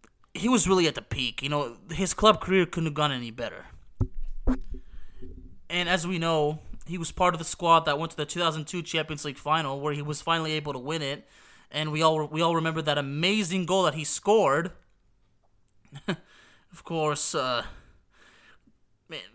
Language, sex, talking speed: English, male, 180 wpm